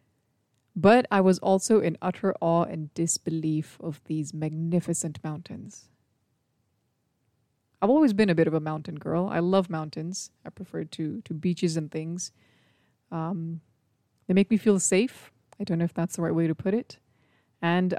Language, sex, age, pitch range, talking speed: English, female, 20-39, 150-195 Hz, 165 wpm